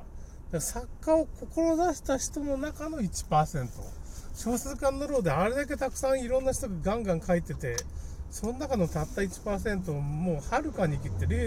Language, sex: Japanese, male